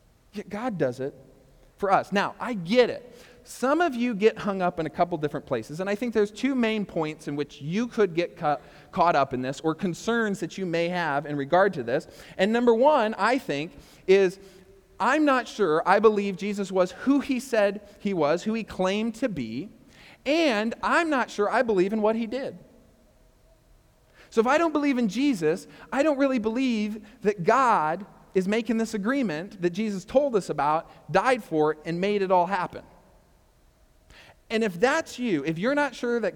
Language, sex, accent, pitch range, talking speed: English, male, American, 160-225 Hz, 195 wpm